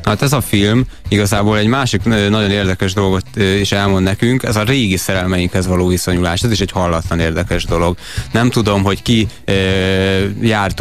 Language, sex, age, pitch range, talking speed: Hungarian, male, 20-39, 95-115 Hz, 170 wpm